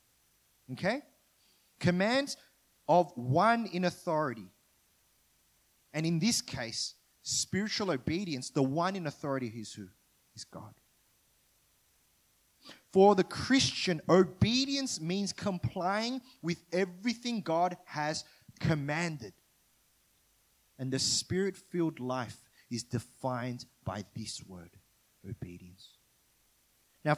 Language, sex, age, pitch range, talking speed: English, male, 30-49, 130-190 Hz, 95 wpm